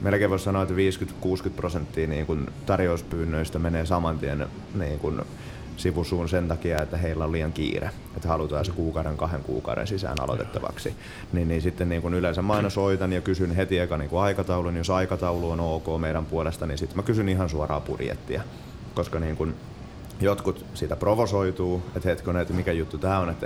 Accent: native